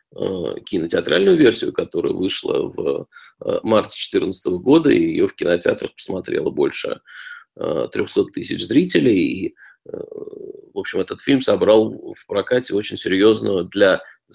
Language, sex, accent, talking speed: Russian, male, native, 120 wpm